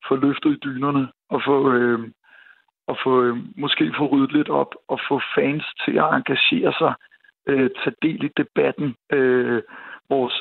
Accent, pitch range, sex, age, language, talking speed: native, 125-145 Hz, male, 60-79, Danish, 175 wpm